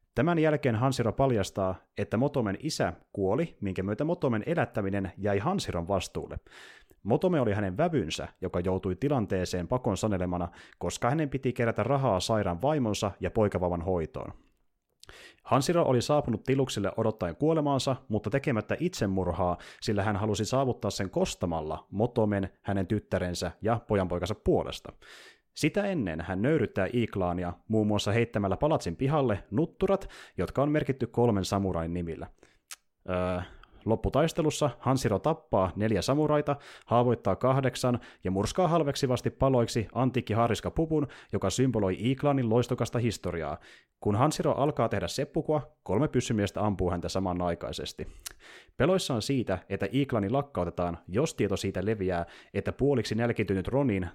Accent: native